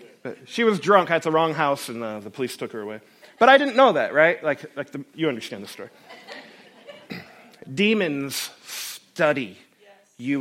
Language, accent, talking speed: English, American, 180 wpm